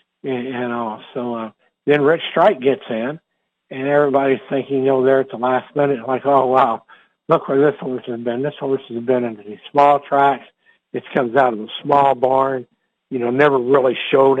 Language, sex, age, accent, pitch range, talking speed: English, male, 60-79, American, 125-140 Hz, 200 wpm